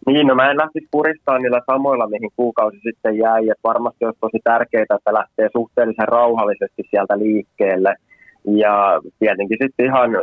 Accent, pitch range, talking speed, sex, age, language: native, 110-120 Hz, 160 wpm, male, 20-39, Finnish